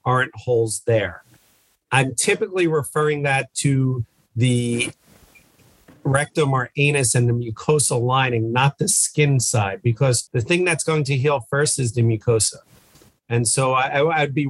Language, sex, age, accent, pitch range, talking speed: English, male, 40-59, American, 120-140 Hz, 150 wpm